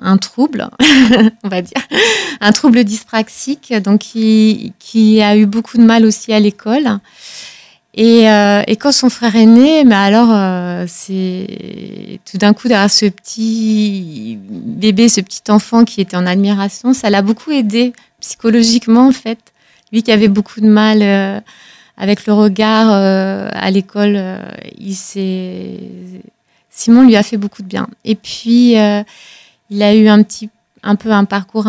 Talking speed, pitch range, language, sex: 160 wpm, 200-230 Hz, French, female